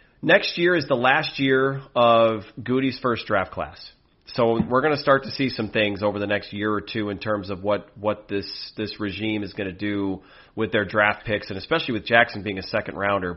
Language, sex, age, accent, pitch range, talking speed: English, male, 30-49, American, 100-120 Hz, 225 wpm